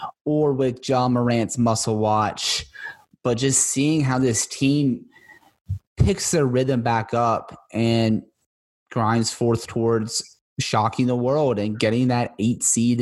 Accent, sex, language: American, male, English